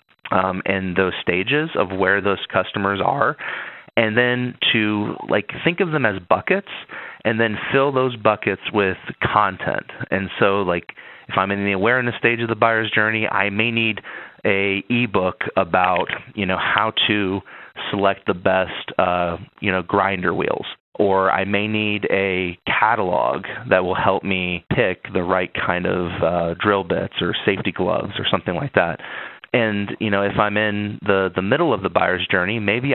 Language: English